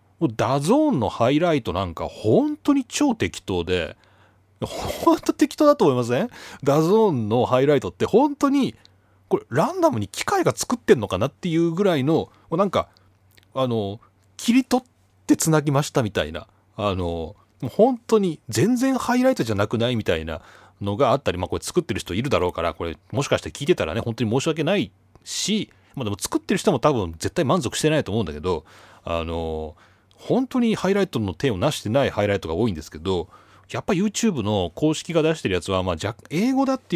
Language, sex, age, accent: Japanese, male, 30-49, native